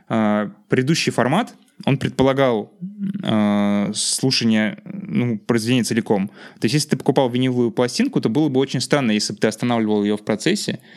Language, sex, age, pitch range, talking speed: Russian, male, 20-39, 110-175 Hz, 150 wpm